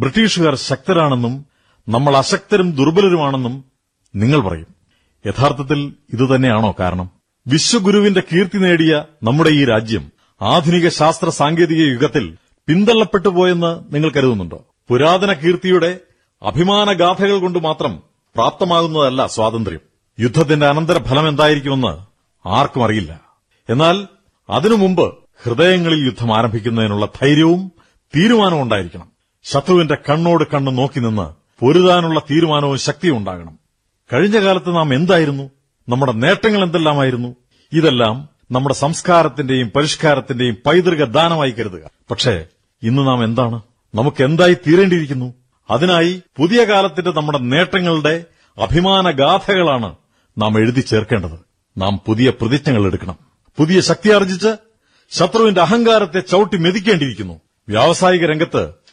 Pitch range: 120-175 Hz